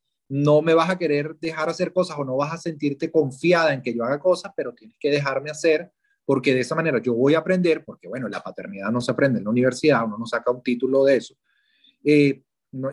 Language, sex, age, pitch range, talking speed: Spanish, male, 30-49, 125-165 Hz, 235 wpm